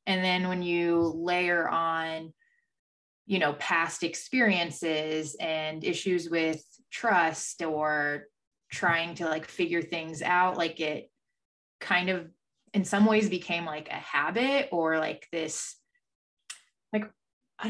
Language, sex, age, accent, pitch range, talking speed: English, female, 20-39, American, 160-195 Hz, 125 wpm